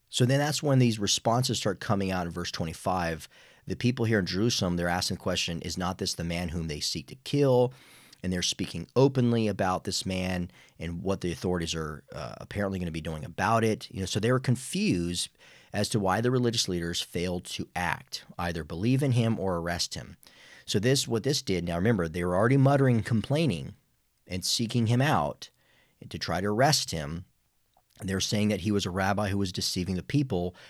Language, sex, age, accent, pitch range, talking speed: English, male, 40-59, American, 90-120 Hz, 205 wpm